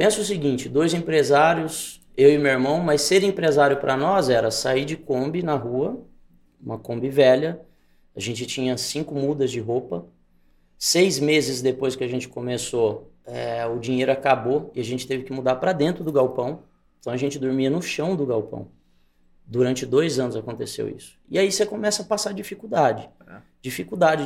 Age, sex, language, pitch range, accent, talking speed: 20-39, male, Portuguese, 125-170 Hz, Brazilian, 180 wpm